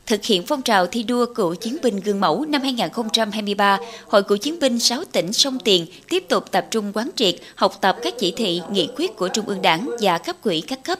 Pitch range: 195-260 Hz